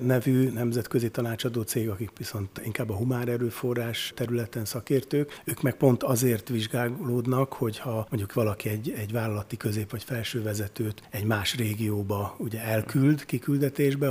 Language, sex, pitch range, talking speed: Hungarian, male, 105-130 Hz, 135 wpm